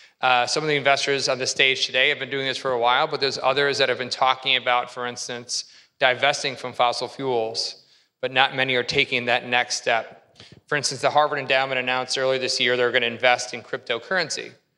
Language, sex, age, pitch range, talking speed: English, male, 30-49, 125-145 Hz, 215 wpm